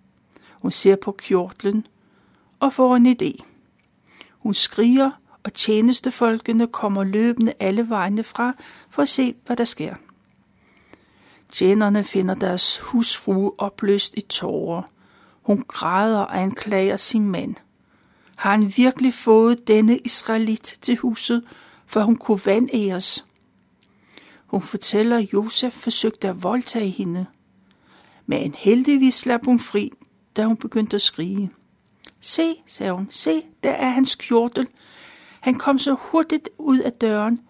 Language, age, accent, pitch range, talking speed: Danish, 60-79, native, 200-250 Hz, 130 wpm